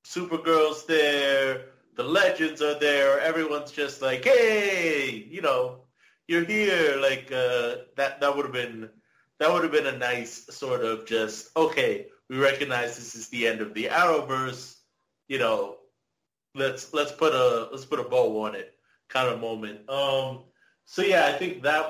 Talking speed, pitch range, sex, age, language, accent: 165 wpm, 120-150 Hz, male, 30-49, English, American